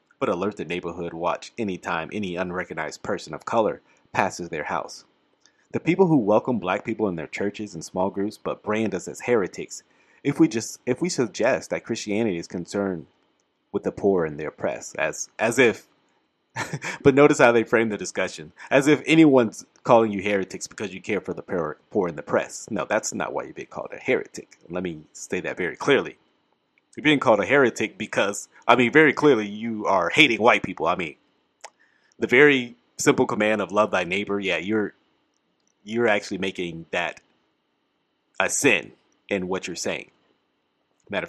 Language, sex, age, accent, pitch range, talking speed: English, male, 30-49, American, 90-115 Hz, 185 wpm